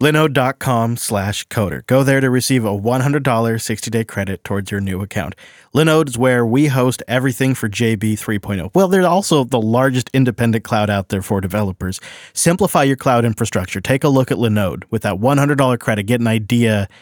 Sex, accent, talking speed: male, American, 180 wpm